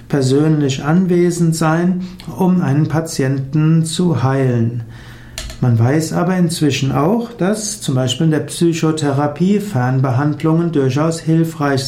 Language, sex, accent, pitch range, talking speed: German, male, German, 130-165 Hz, 110 wpm